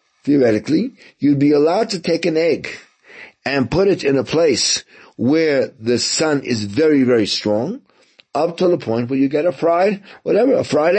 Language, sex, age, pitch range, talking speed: English, male, 50-69, 125-175 Hz, 180 wpm